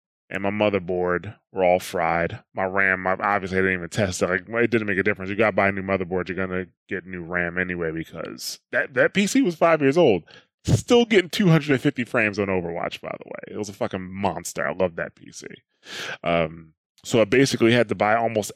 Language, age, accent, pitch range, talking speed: English, 20-39, American, 95-125 Hz, 225 wpm